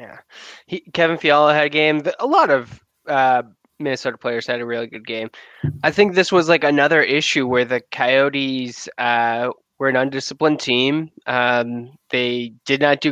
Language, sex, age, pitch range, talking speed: English, male, 20-39, 125-155 Hz, 170 wpm